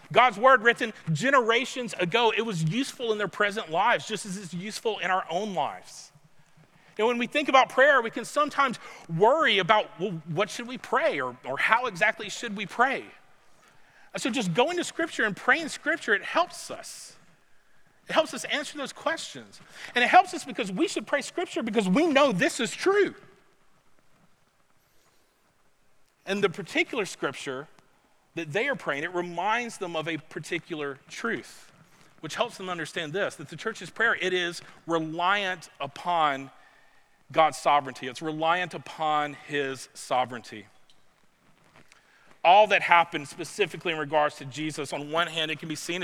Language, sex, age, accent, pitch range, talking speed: English, male, 40-59, American, 155-230 Hz, 160 wpm